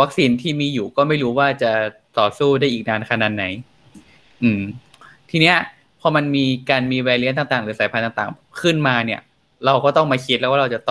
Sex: male